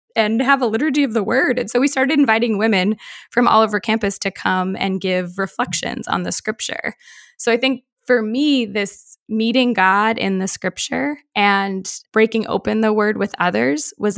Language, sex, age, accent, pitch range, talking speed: English, female, 10-29, American, 200-260 Hz, 185 wpm